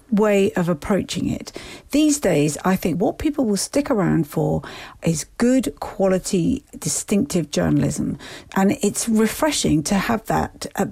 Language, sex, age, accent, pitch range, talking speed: English, female, 50-69, British, 175-230 Hz, 145 wpm